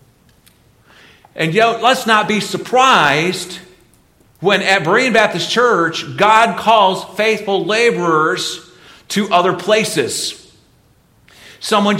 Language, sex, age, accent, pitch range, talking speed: English, male, 50-69, American, 165-200 Hz, 95 wpm